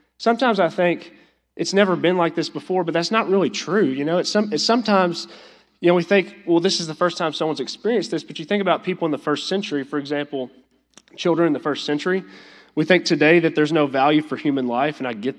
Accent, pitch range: American, 145-175 Hz